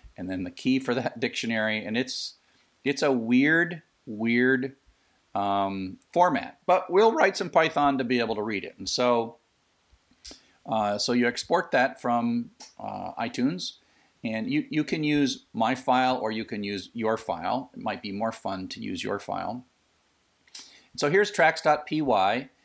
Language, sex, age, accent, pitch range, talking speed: English, male, 40-59, American, 105-135 Hz, 165 wpm